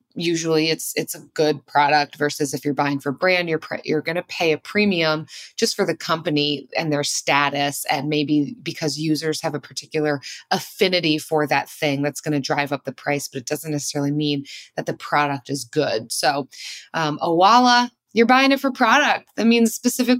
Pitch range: 155-200 Hz